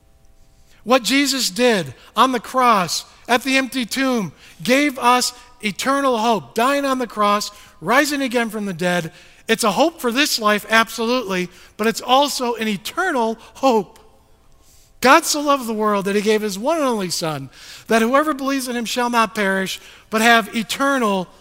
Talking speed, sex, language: 170 wpm, male, English